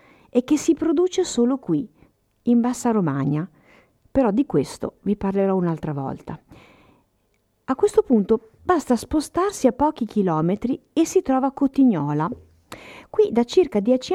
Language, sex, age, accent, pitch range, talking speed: Italian, female, 50-69, native, 180-275 Hz, 140 wpm